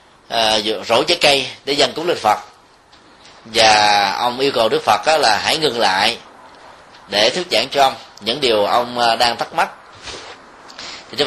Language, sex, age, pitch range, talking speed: Vietnamese, male, 20-39, 110-150 Hz, 170 wpm